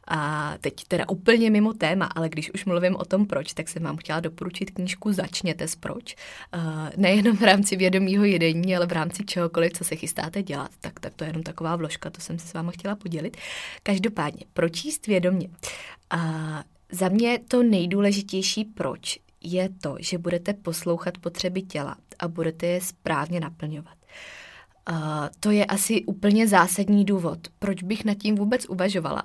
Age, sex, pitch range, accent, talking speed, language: 20-39, female, 165-200 Hz, native, 170 wpm, Czech